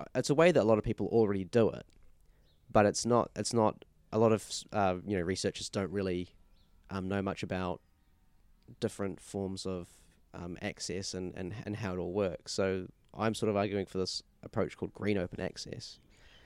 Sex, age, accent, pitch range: male, 20-39, Australian, 95-110 Hz